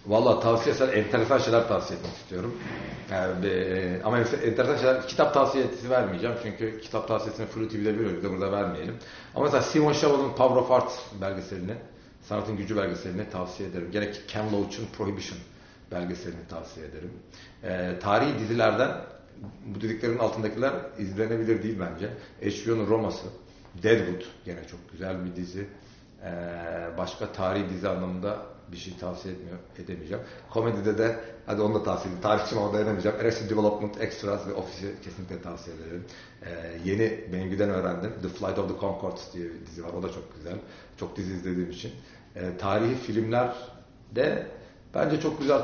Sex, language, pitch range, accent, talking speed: male, Turkish, 90-115 Hz, native, 155 wpm